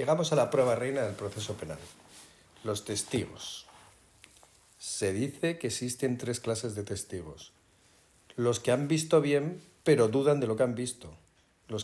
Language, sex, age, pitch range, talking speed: Spanish, male, 50-69, 100-125 Hz, 155 wpm